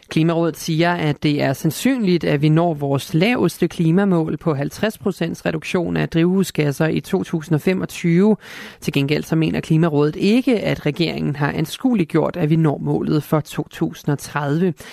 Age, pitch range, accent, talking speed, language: 30-49, 145-185 Hz, native, 145 wpm, Danish